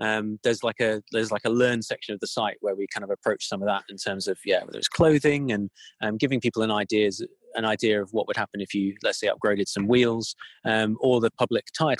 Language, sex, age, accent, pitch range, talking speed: English, male, 30-49, British, 100-120 Hz, 255 wpm